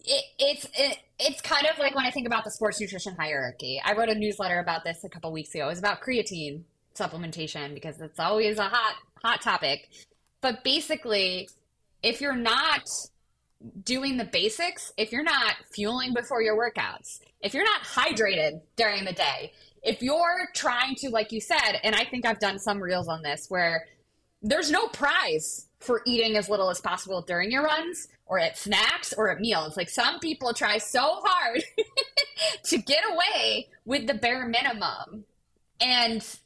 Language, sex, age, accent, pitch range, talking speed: English, female, 20-39, American, 185-270 Hz, 175 wpm